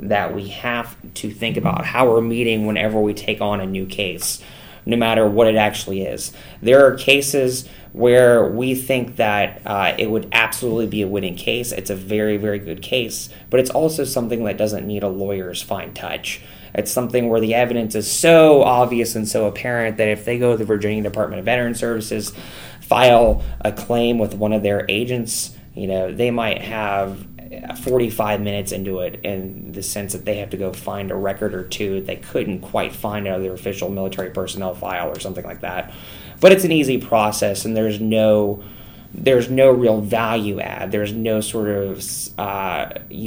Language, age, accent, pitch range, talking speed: English, 20-39, American, 100-120 Hz, 195 wpm